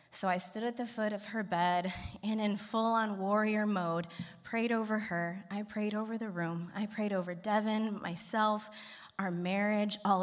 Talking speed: 175 wpm